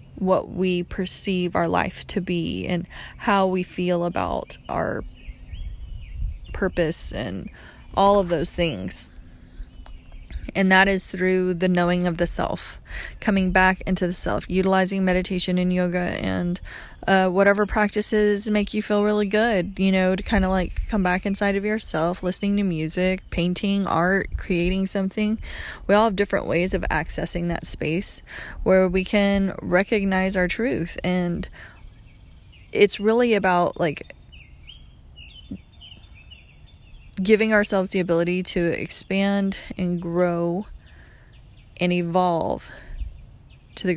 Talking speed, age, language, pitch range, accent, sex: 130 wpm, 20-39, English, 170-195 Hz, American, female